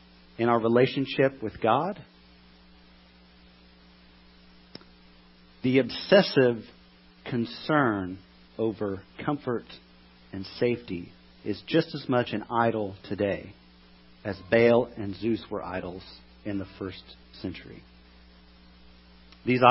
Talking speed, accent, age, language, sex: 90 wpm, American, 40-59, English, male